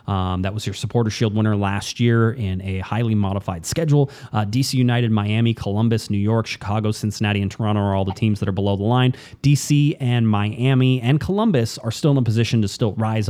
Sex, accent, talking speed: male, American, 210 wpm